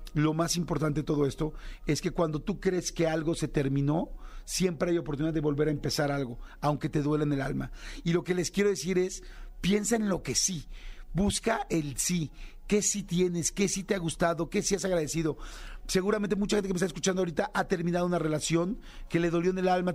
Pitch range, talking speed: 155-180 Hz, 225 wpm